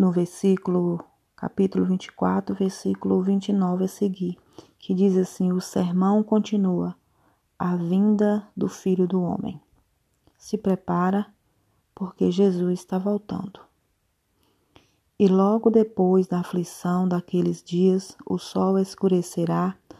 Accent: Brazilian